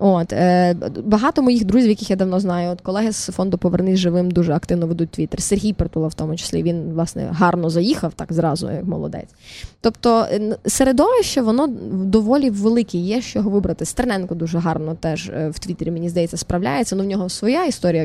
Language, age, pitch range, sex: Ukrainian, 20-39, 170-200 Hz, female